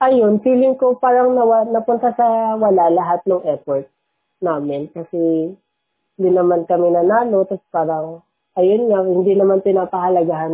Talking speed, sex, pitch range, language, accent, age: 135 wpm, female, 165-200 Hz, Filipino, native, 20-39